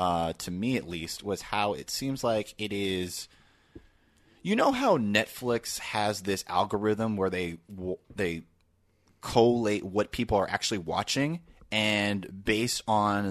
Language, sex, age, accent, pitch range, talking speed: English, male, 30-49, American, 85-105 Hz, 145 wpm